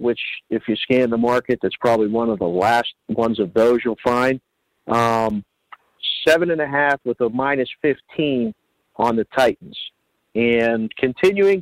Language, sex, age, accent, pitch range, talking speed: English, male, 50-69, American, 115-135 Hz, 160 wpm